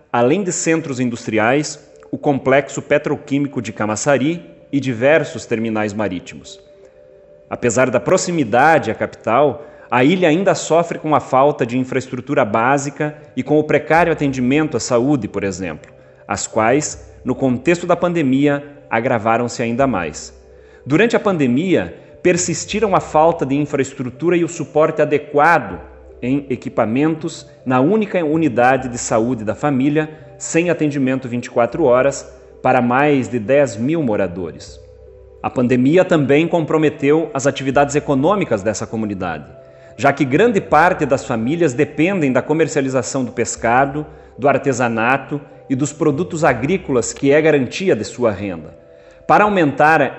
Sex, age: male, 30-49